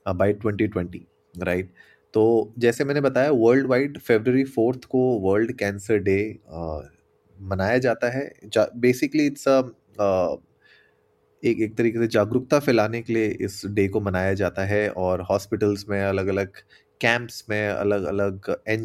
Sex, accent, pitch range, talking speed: male, native, 100-125 Hz, 150 wpm